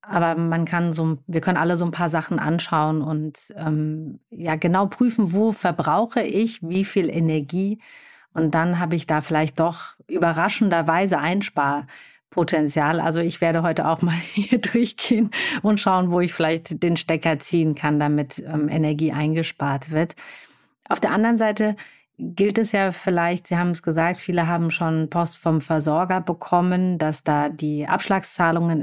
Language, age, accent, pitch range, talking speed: German, 30-49, German, 165-205 Hz, 160 wpm